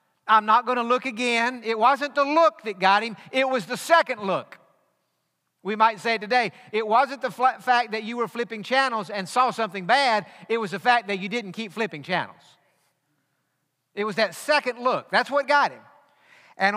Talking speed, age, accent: 195 wpm, 50-69, American